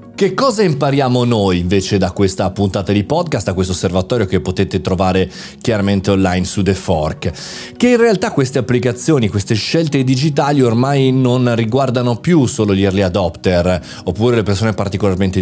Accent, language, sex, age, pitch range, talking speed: native, Italian, male, 30-49, 100-130 Hz, 160 wpm